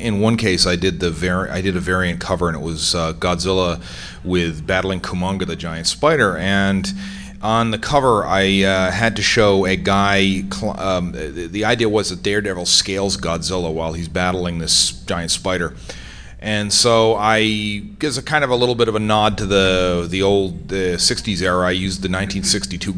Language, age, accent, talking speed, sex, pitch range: English, 40-59, American, 195 wpm, male, 90-105 Hz